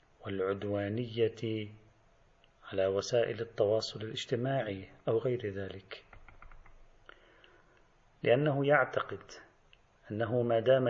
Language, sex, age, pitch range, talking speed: Arabic, male, 40-59, 100-120 Hz, 70 wpm